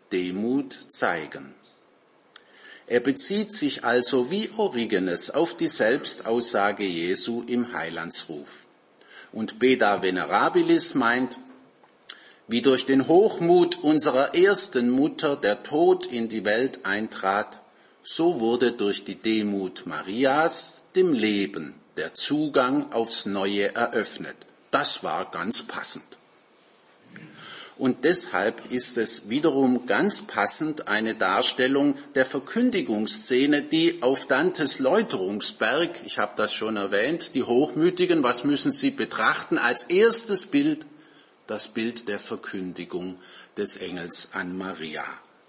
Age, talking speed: 50-69, 110 wpm